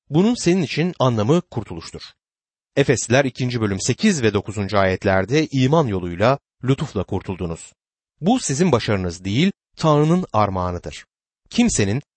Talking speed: 115 wpm